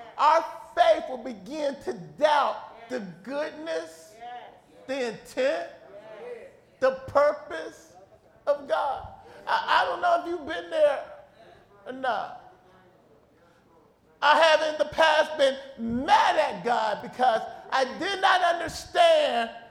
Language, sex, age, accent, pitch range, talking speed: English, male, 40-59, American, 245-340 Hz, 115 wpm